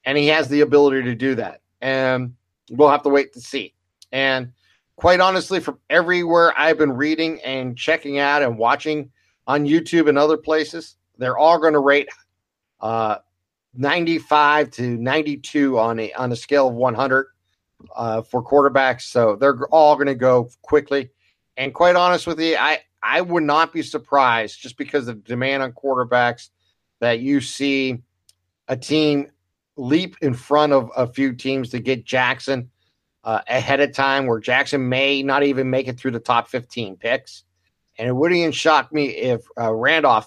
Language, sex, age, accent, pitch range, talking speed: English, male, 50-69, American, 120-150 Hz, 175 wpm